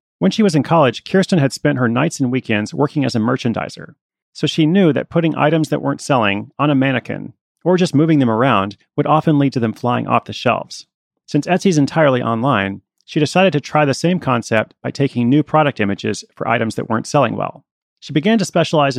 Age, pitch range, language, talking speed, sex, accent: 30-49, 120-150 Hz, English, 215 wpm, male, American